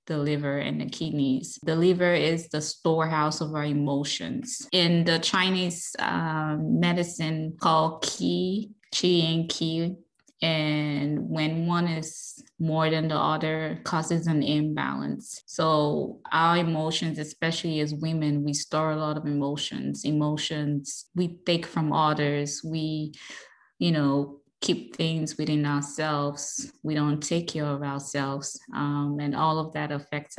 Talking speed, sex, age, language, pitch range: 140 wpm, female, 20-39, English, 145-165 Hz